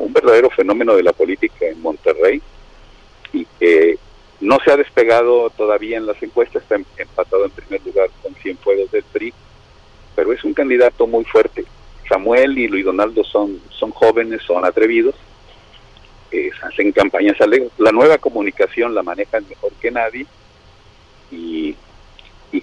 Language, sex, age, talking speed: Spanish, male, 50-69, 150 wpm